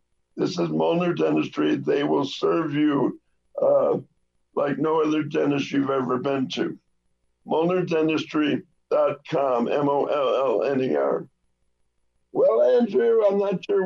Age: 60-79